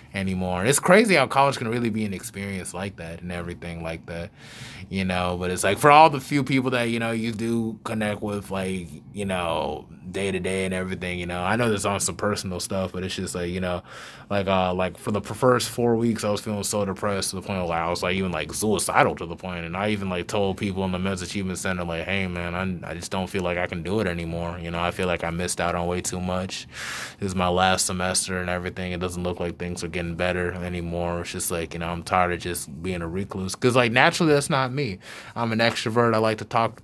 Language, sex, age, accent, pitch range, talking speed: English, male, 20-39, American, 90-105 Hz, 260 wpm